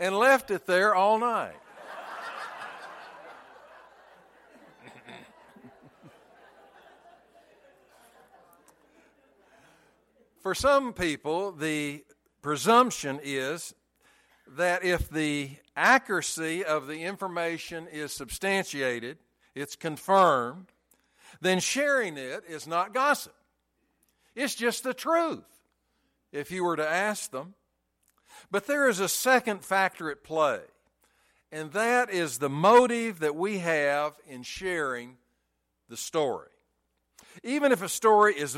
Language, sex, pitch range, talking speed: English, male, 150-220 Hz, 100 wpm